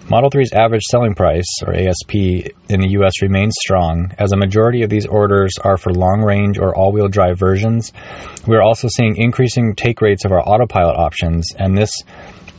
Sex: male